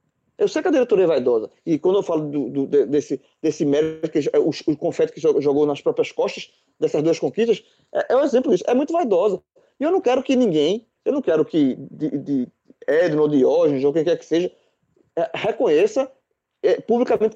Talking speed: 200 wpm